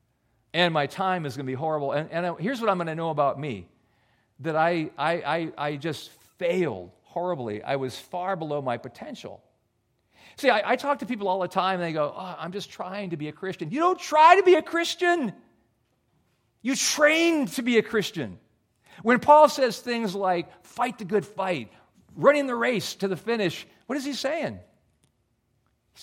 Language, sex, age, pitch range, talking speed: English, male, 40-59, 135-200 Hz, 195 wpm